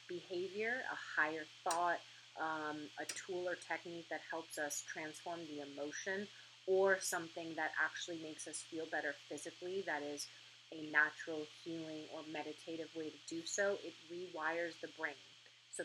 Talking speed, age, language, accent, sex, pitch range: 150 wpm, 30-49, English, American, female, 155-180 Hz